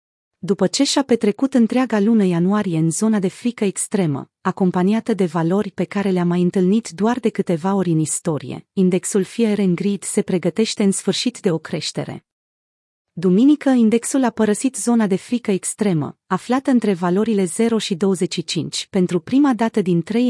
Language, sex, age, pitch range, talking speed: Romanian, female, 30-49, 180-225 Hz, 165 wpm